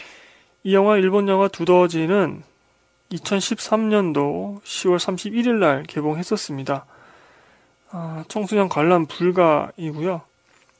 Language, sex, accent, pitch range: Korean, male, native, 155-200 Hz